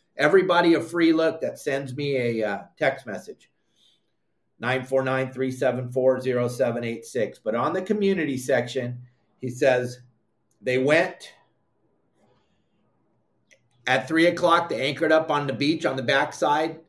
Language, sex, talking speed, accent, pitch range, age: English, male, 150 wpm, American, 130-165 Hz, 30-49